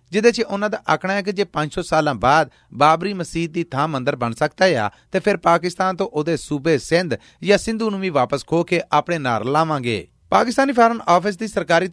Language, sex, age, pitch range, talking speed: Punjabi, male, 30-49, 135-180 Hz, 205 wpm